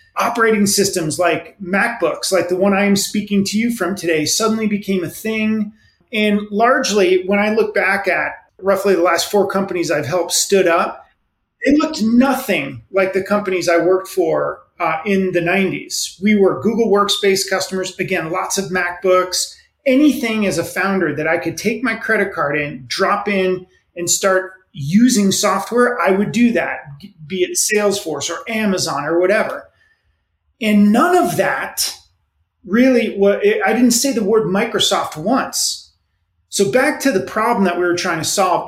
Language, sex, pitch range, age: English, male, 175-220 Hz, 30-49